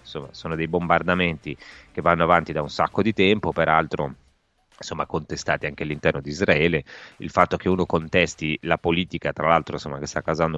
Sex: male